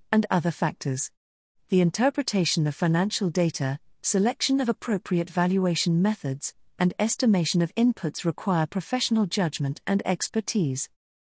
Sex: female